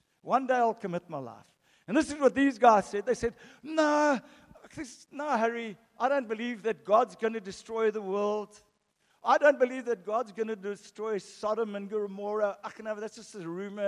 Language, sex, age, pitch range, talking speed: English, male, 50-69, 185-230 Hz, 210 wpm